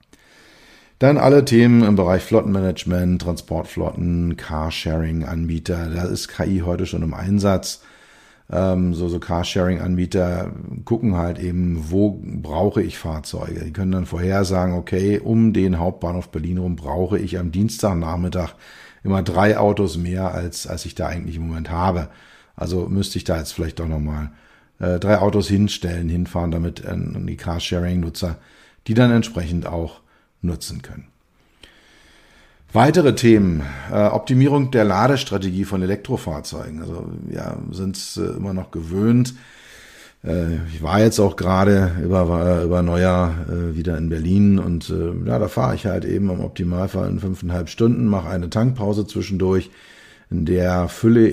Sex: male